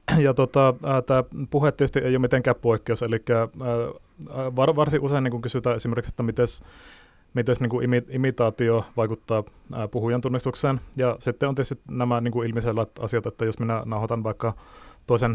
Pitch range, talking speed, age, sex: 115-125 Hz, 155 wpm, 30-49, male